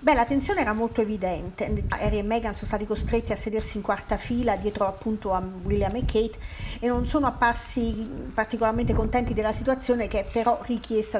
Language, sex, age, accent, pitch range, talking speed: Italian, female, 40-59, native, 205-230 Hz, 190 wpm